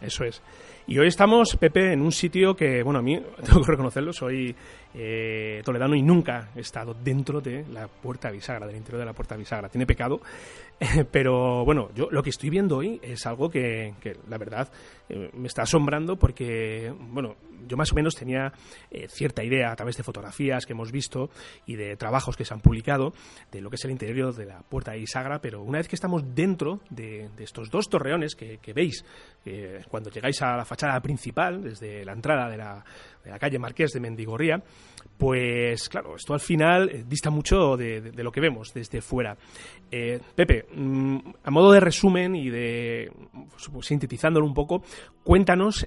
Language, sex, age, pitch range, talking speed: Spanish, male, 30-49, 115-150 Hz, 200 wpm